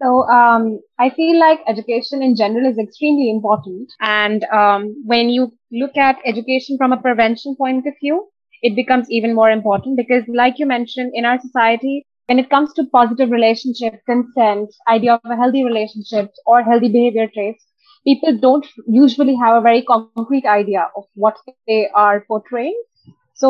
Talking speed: 170 wpm